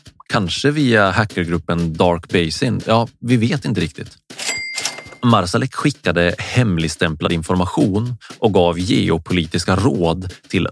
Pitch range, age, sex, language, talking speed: 90-125 Hz, 30-49, male, Swedish, 105 wpm